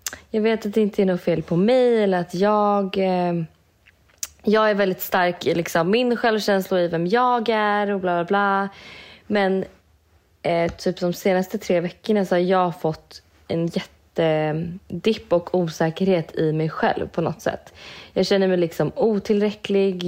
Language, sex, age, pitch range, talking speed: Swedish, female, 20-39, 170-210 Hz, 165 wpm